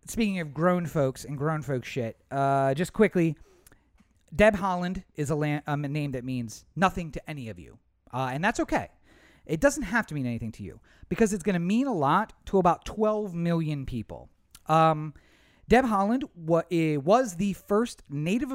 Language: English